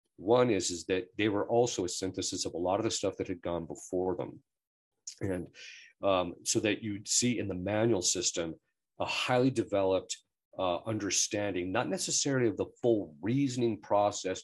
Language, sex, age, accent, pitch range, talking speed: English, male, 50-69, American, 90-115 Hz, 175 wpm